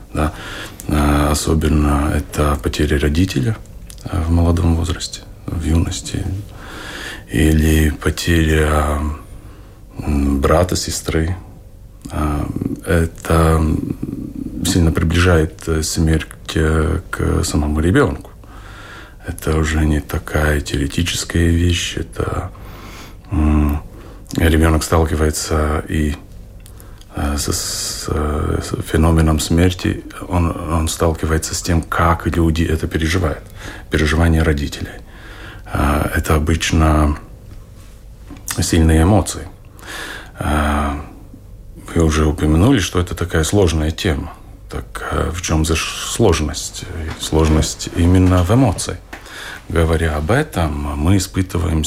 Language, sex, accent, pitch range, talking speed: Russian, male, native, 80-95 Hz, 80 wpm